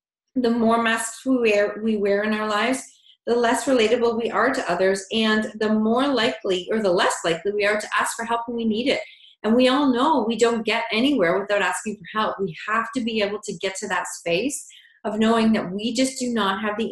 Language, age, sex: English, 30-49, female